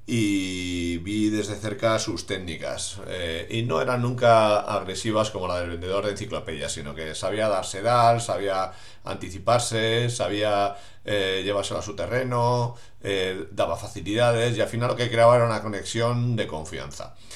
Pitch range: 100-120 Hz